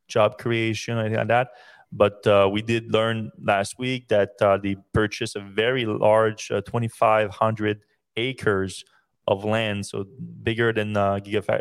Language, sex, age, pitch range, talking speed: English, male, 20-39, 105-130 Hz, 150 wpm